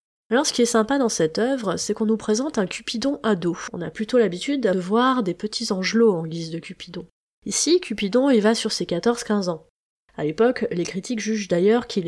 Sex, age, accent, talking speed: female, 20-39, French, 215 wpm